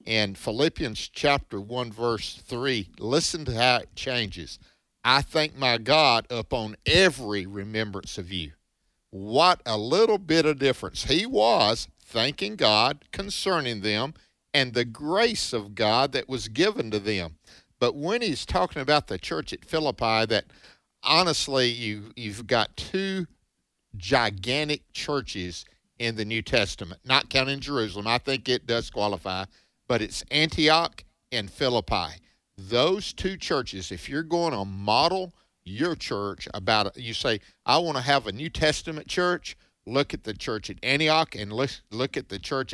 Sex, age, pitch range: male, 50-69, 105-140 Hz